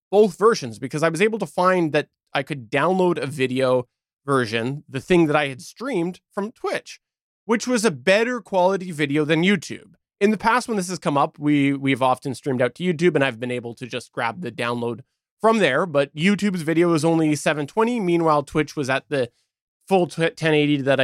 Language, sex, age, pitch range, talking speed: English, male, 20-39, 140-185 Hz, 205 wpm